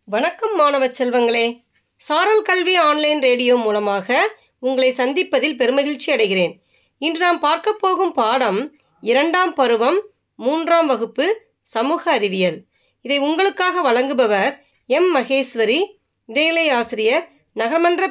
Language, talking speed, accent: Tamil, 105 wpm, native